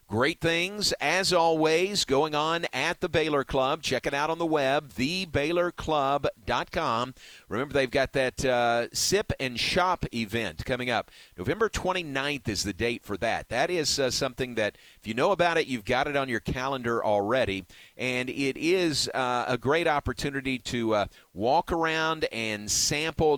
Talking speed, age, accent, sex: 165 wpm, 50-69, American, male